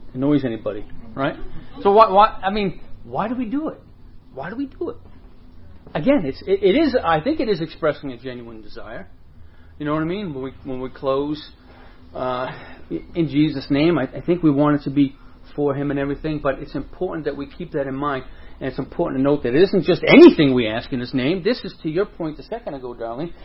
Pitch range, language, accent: 140-205 Hz, English, American